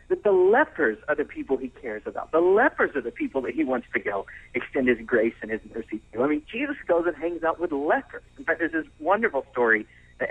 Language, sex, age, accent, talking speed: English, male, 40-59, American, 255 wpm